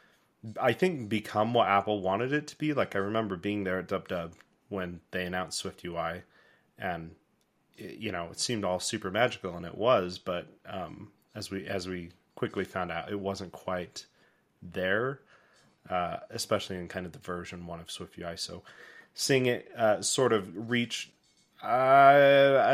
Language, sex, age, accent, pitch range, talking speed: English, male, 30-49, American, 95-120 Hz, 175 wpm